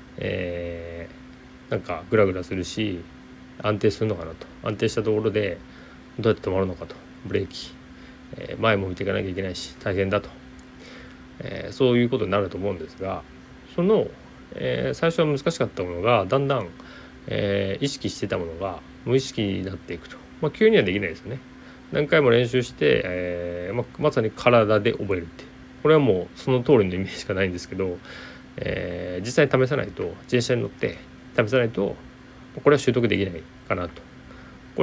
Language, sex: Japanese, male